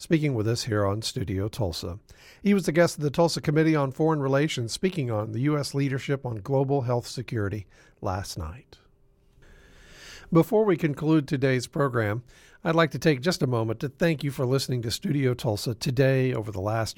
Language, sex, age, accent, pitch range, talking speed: English, male, 50-69, American, 115-150 Hz, 185 wpm